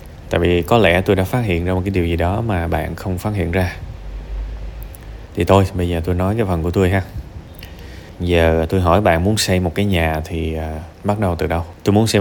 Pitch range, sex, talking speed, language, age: 85-100 Hz, male, 240 wpm, Vietnamese, 20-39